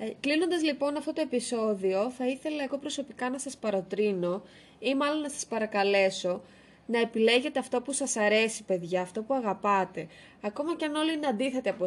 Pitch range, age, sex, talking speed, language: 200-270 Hz, 20-39, female, 175 wpm, Greek